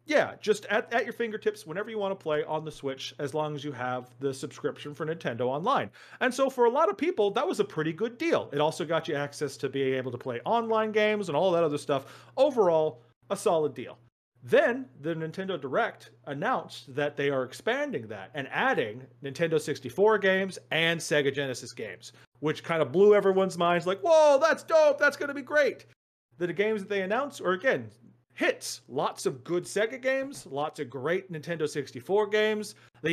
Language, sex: English, male